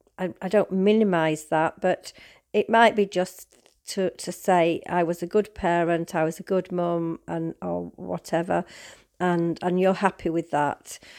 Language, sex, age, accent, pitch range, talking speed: English, female, 40-59, British, 180-220 Hz, 170 wpm